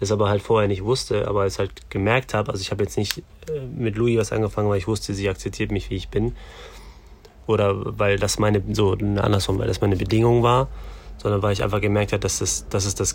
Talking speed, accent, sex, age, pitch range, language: 235 wpm, German, male, 30-49, 95-110 Hz, German